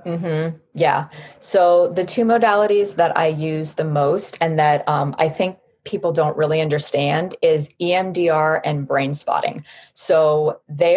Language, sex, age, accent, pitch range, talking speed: English, female, 30-49, American, 160-205 Hz, 150 wpm